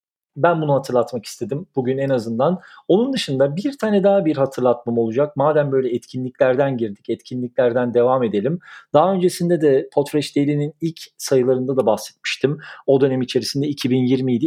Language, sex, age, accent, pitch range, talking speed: Turkish, male, 40-59, native, 125-145 Hz, 145 wpm